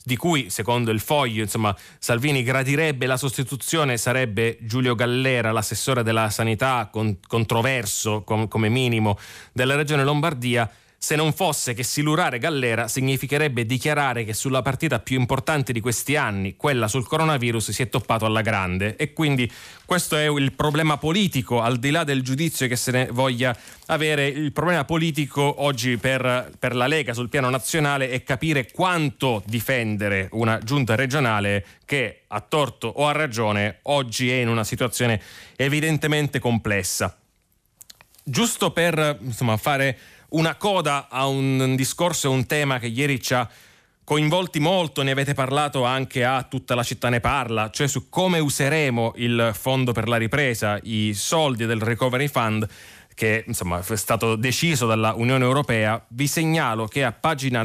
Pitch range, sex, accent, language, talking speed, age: 115-145 Hz, male, native, Italian, 155 wpm, 30-49